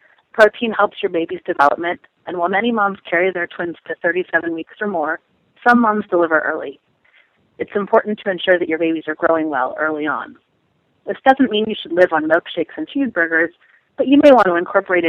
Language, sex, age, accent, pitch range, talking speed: English, female, 30-49, American, 160-200 Hz, 195 wpm